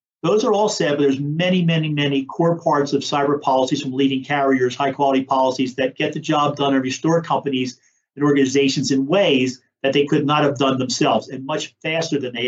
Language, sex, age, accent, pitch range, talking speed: English, male, 50-69, American, 135-170 Hz, 210 wpm